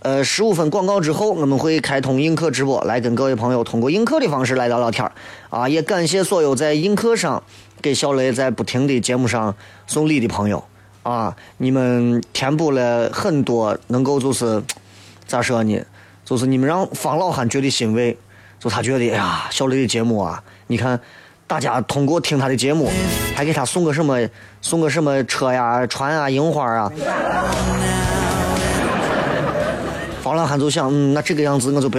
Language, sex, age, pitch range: Chinese, male, 30-49, 115-160 Hz